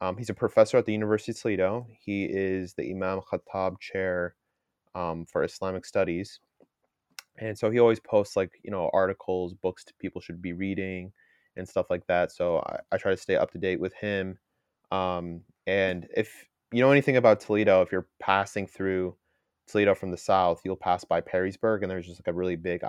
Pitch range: 85-100 Hz